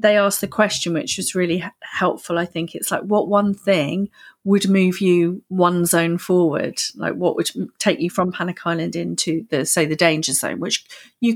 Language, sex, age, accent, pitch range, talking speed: English, female, 40-59, British, 175-220 Hz, 195 wpm